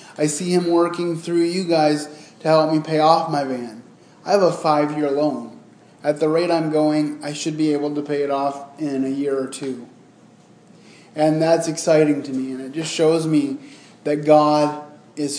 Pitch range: 150-180 Hz